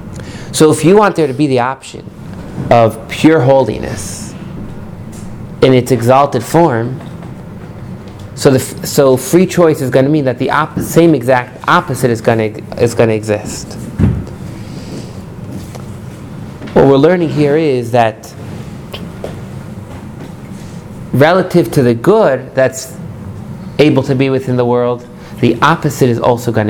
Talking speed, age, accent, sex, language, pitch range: 125 wpm, 30-49, American, male, English, 110-145 Hz